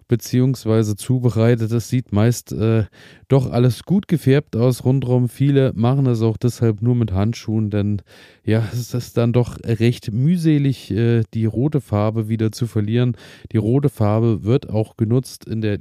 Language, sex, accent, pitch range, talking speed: German, male, German, 105-125 Hz, 165 wpm